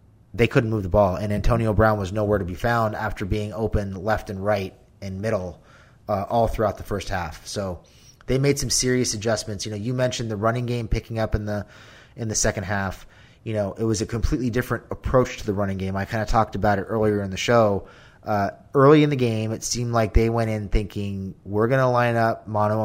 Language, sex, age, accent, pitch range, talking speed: English, male, 30-49, American, 95-115 Hz, 230 wpm